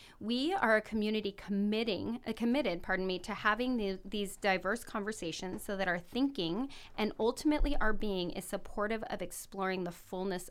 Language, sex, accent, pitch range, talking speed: English, female, American, 190-235 Hz, 160 wpm